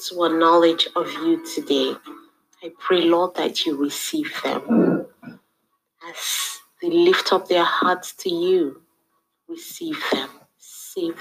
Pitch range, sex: 150-195 Hz, female